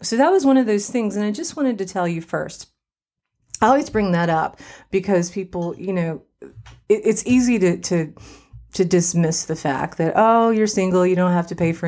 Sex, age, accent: female, 30-49, American